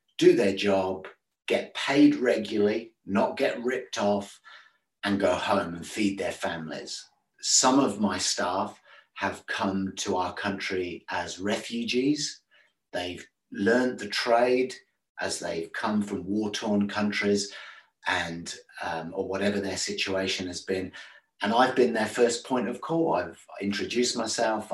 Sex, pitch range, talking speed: male, 95-120 Hz, 140 wpm